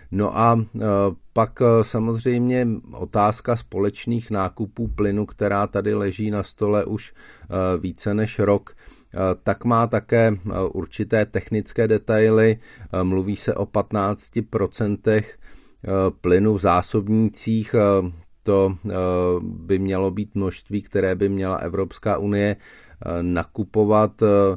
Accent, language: native, Czech